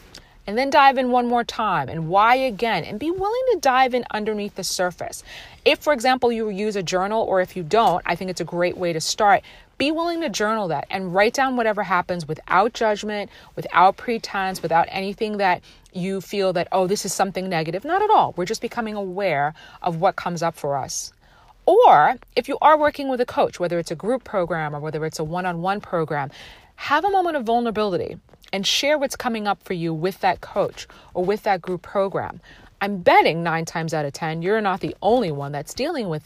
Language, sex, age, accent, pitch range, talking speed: English, female, 40-59, American, 170-225 Hz, 215 wpm